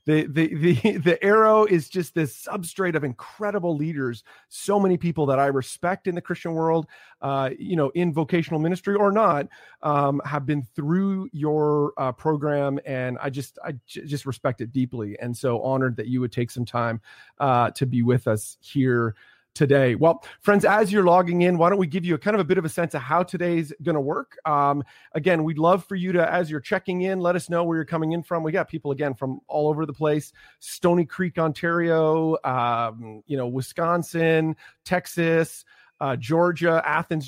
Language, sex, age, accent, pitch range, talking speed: English, male, 30-49, American, 140-180 Hz, 200 wpm